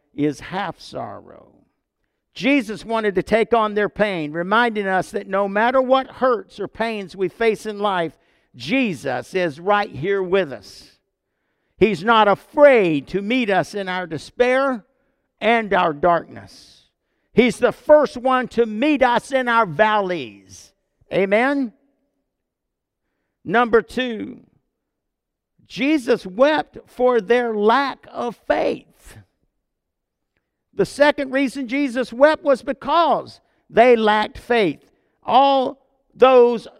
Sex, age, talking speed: male, 50-69, 120 wpm